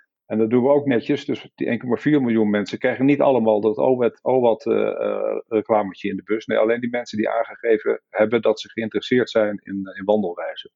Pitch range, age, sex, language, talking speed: 105-120 Hz, 50-69, male, Dutch, 190 wpm